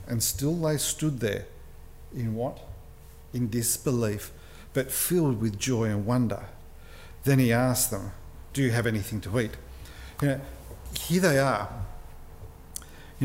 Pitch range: 100-165 Hz